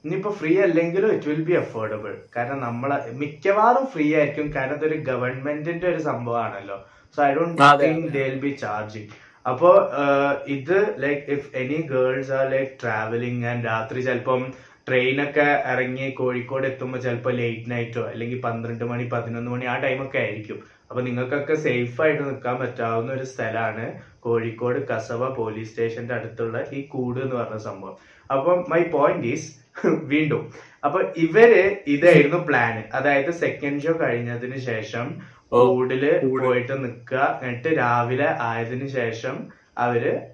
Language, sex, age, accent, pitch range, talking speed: Malayalam, male, 20-39, native, 115-140 Hz, 130 wpm